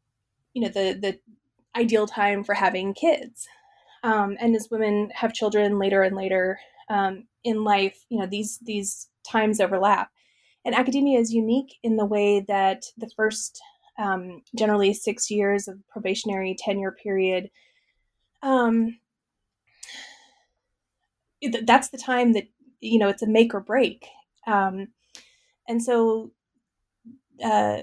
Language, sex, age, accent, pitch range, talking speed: English, female, 20-39, American, 200-240 Hz, 130 wpm